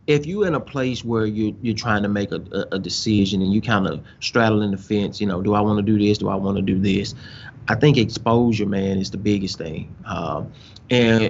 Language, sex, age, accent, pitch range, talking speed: English, male, 30-49, American, 105-125 Hz, 230 wpm